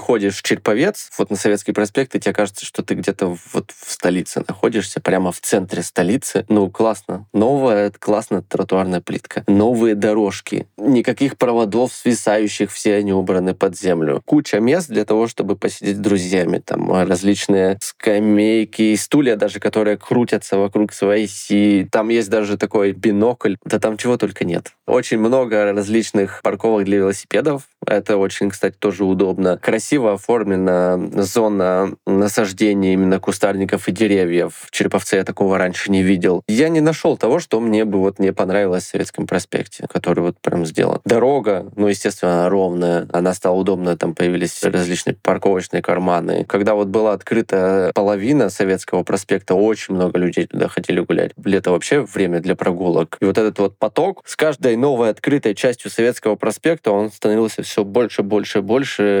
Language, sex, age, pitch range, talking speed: Russian, male, 20-39, 95-110 Hz, 160 wpm